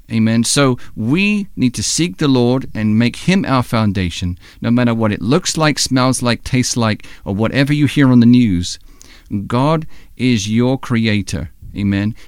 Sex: male